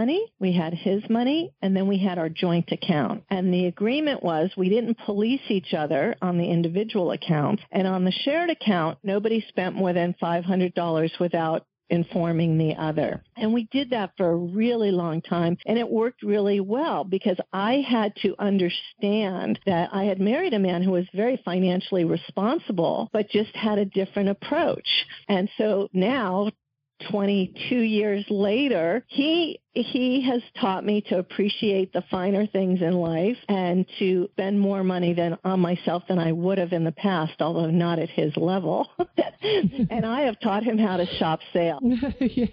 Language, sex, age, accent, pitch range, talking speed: English, female, 50-69, American, 180-230 Hz, 170 wpm